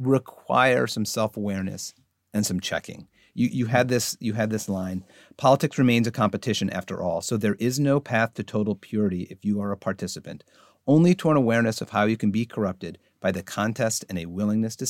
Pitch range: 100-125 Hz